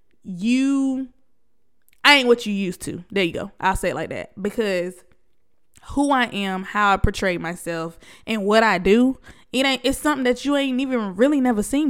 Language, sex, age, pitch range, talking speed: English, female, 20-39, 190-235 Hz, 190 wpm